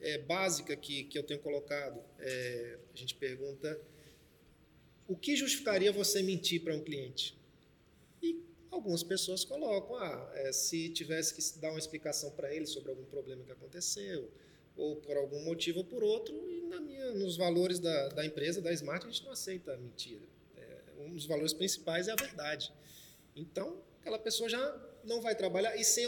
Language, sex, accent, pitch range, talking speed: Portuguese, male, Brazilian, 155-215 Hz, 175 wpm